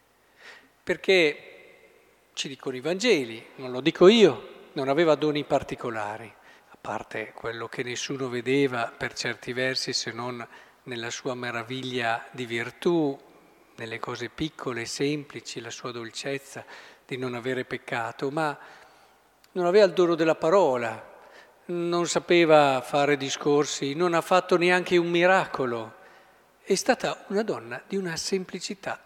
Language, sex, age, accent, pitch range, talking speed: Italian, male, 50-69, native, 130-175 Hz, 135 wpm